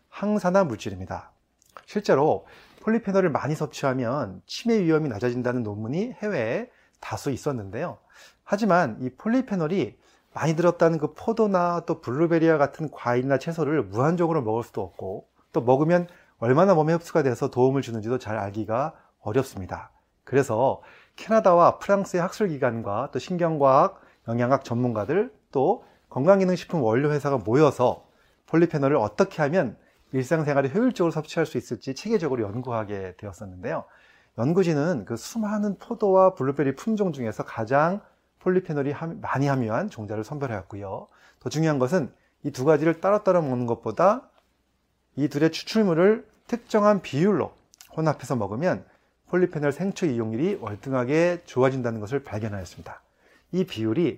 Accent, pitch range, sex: native, 120-180 Hz, male